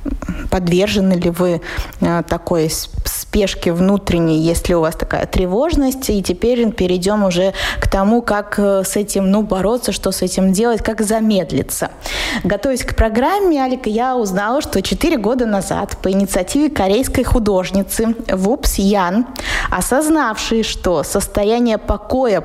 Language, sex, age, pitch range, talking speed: Russian, female, 20-39, 195-260 Hz, 125 wpm